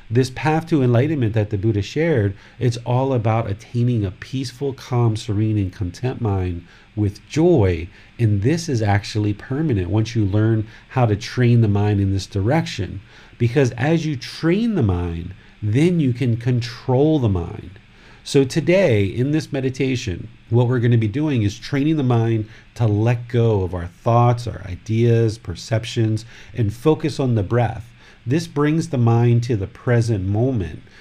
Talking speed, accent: 165 wpm, American